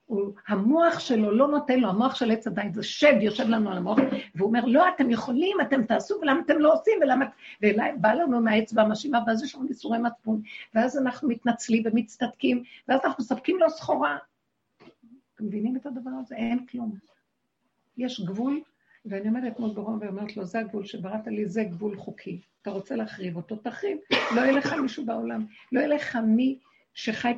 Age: 60-79